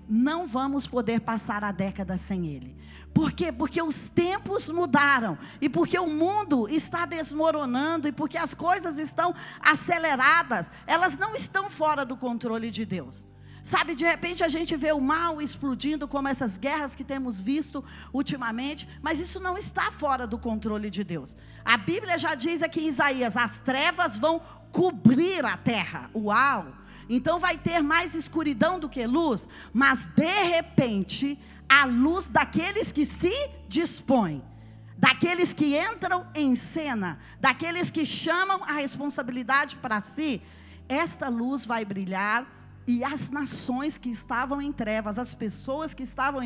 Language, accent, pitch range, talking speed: Portuguese, Brazilian, 230-320 Hz, 150 wpm